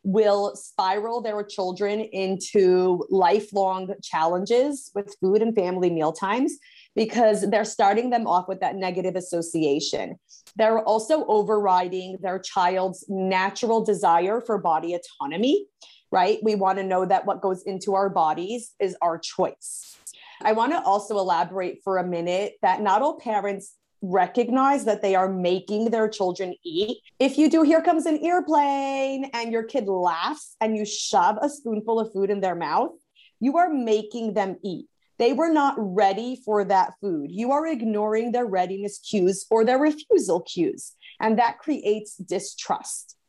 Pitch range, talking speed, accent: 190-245 Hz, 155 wpm, American